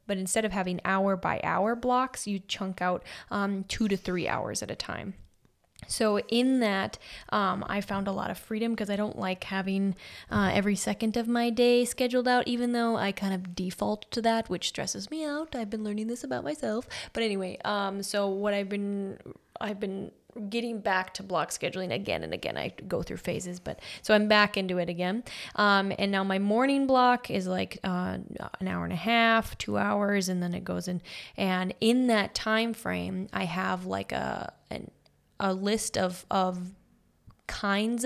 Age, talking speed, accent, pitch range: 10-29, 195 wpm, American, 185-225 Hz